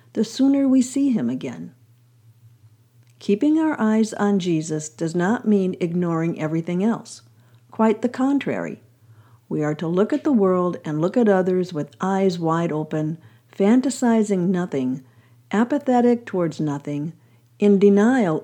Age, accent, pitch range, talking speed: 50-69, American, 130-220 Hz, 135 wpm